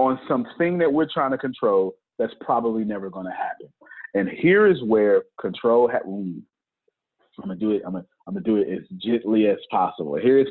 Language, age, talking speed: English, 30-49, 195 wpm